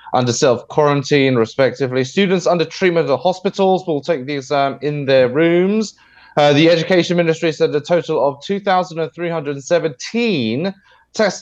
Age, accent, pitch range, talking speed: 30-49, British, 125-170 Hz, 135 wpm